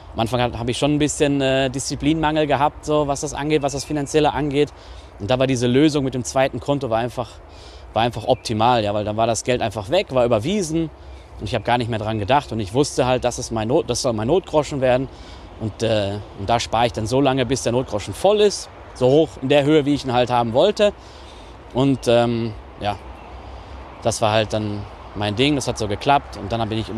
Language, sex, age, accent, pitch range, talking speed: German, male, 30-49, German, 100-135 Hz, 230 wpm